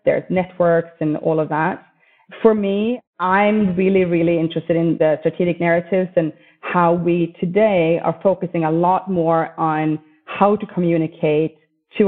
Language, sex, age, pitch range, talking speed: English, female, 30-49, 160-190 Hz, 150 wpm